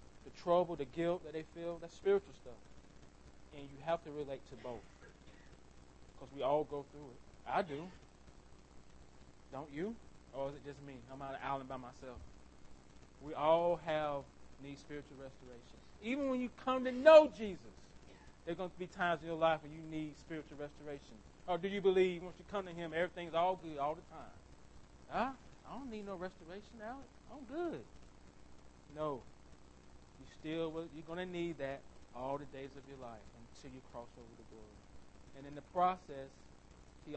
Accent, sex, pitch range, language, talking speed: American, male, 100-170 Hz, English, 180 wpm